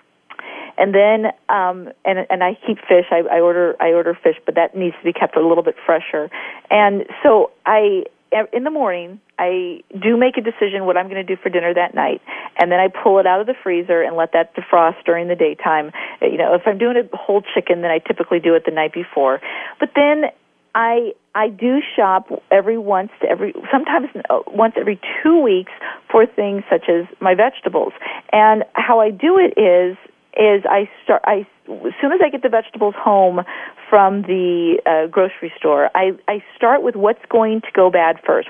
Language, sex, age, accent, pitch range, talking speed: English, female, 40-59, American, 175-230 Hz, 205 wpm